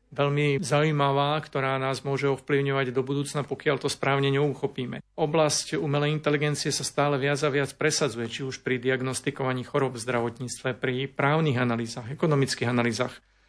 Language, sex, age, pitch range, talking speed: Slovak, male, 40-59, 135-150 Hz, 145 wpm